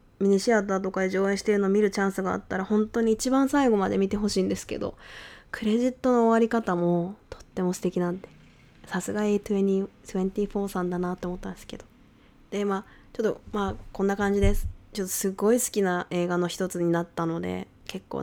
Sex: female